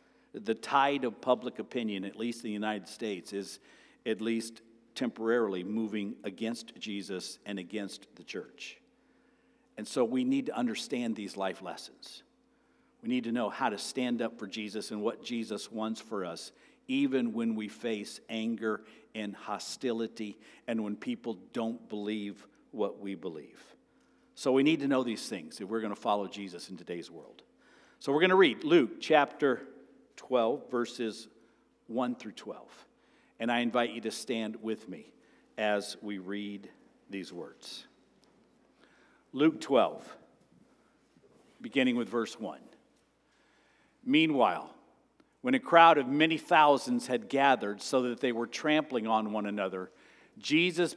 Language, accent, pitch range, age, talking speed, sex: English, American, 105-140 Hz, 50-69, 150 wpm, male